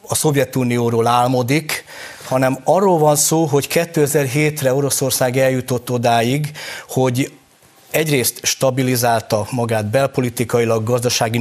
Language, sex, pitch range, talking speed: Hungarian, male, 120-145 Hz, 95 wpm